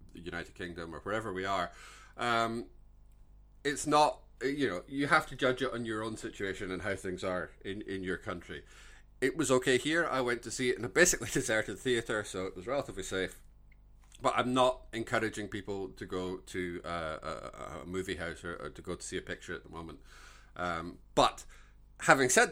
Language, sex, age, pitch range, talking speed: English, male, 30-49, 100-140 Hz, 200 wpm